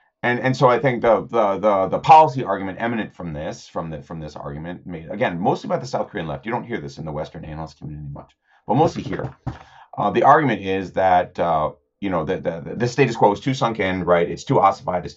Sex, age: male, 30-49